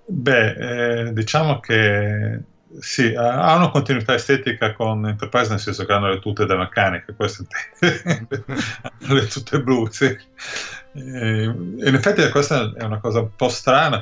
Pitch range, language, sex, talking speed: 100-115 Hz, Italian, male, 150 wpm